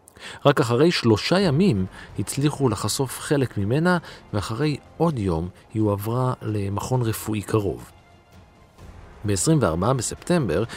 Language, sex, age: Hebrew, male, 50-69